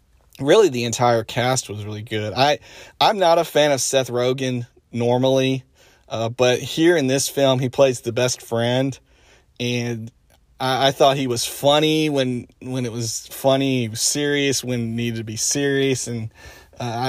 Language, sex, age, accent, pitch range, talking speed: English, male, 40-59, American, 115-130 Hz, 175 wpm